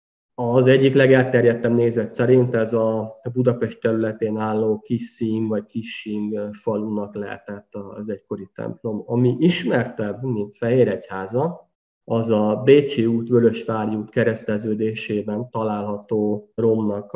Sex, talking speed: male, 110 wpm